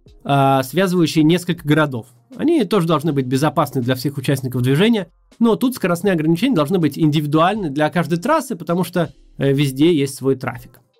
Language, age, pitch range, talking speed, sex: Russian, 20-39, 140-190 Hz, 155 wpm, male